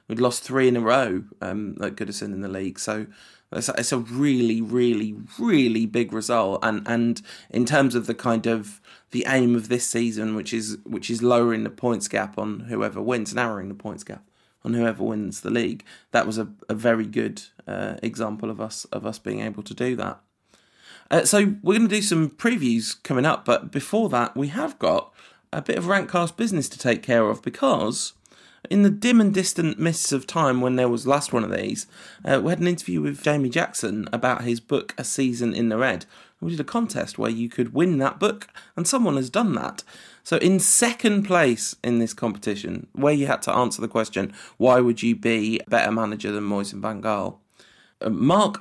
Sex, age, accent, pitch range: male, 20-39, British, 115-165 Hz